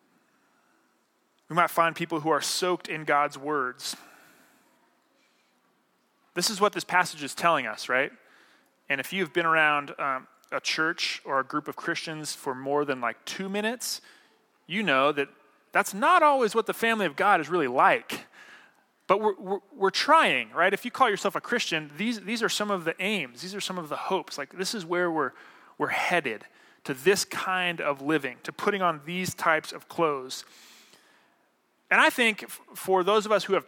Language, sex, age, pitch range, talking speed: English, male, 30-49, 150-205 Hz, 185 wpm